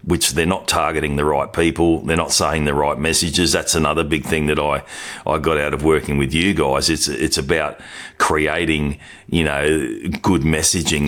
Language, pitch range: English, 75-80 Hz